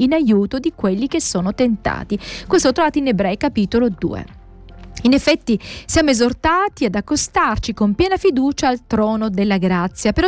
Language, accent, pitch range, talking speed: Italian, native, 205-295 Hz, 160 wpm